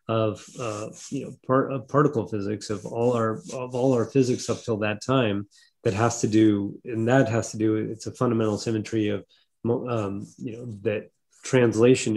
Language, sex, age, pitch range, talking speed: English, male, 30-49, 110-130 Hz, 185 wpm